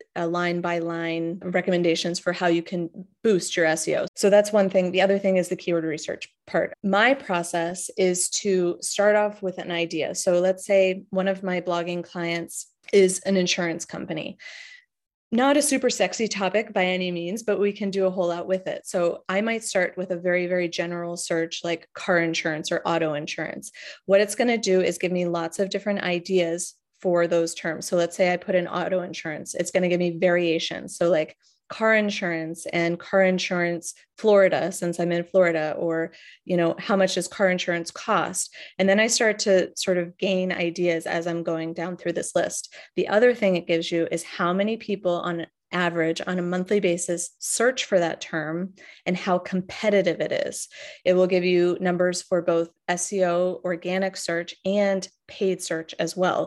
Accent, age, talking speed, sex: American, 30-49, 195 wpm, female